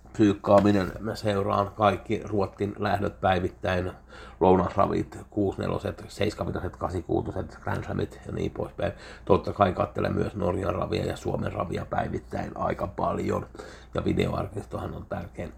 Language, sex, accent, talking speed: Finnish, male, native, 120 wpm